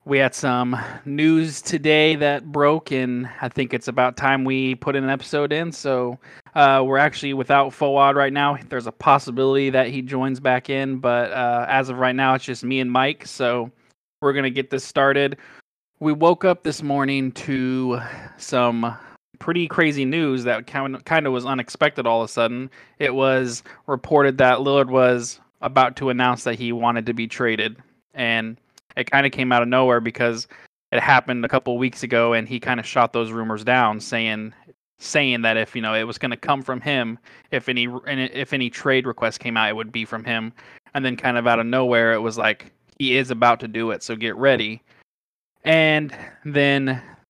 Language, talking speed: English, 200 wpm